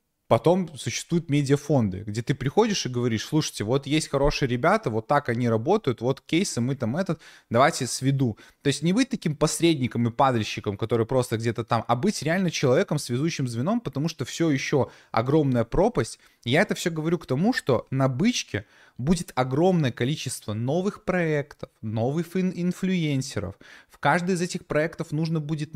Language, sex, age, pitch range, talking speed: Russian, male, 20-39, 125-165 Hz, 165 wpm